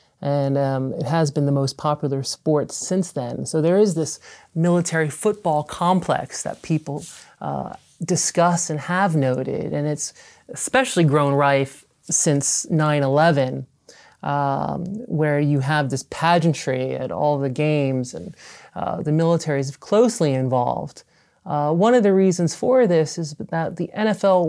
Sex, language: male, Danish